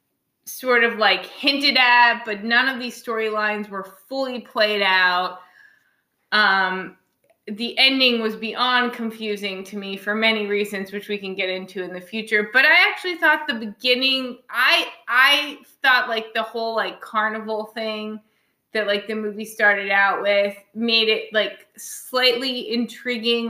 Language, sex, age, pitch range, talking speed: English, female, 20-39, 205-245 Hz, 155 wpm